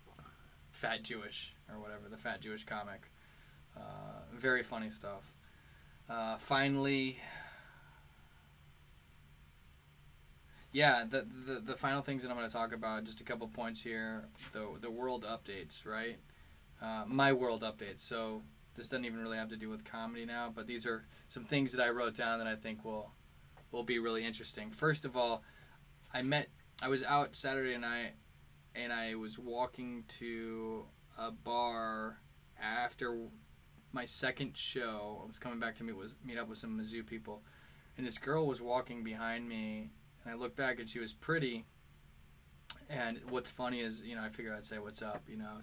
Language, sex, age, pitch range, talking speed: English, male, 20-39, 105-120 Hz, 170 wpm